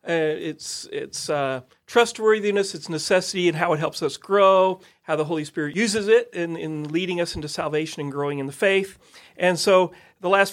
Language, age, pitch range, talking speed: English, 40-59, 160-190 Hz, 195 wpm